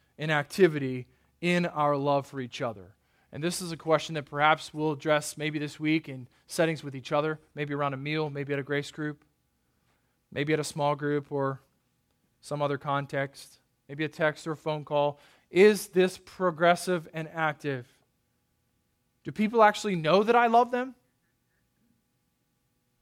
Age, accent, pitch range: 20-39, American, 135-160 Hz